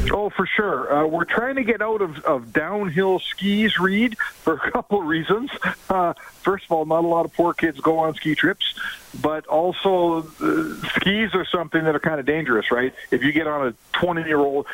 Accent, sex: American, male